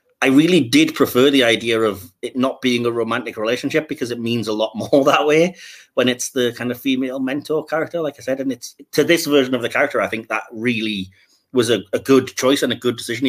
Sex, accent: male, British